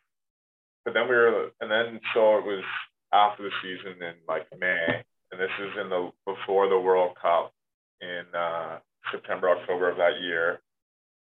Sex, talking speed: male, 165 wpm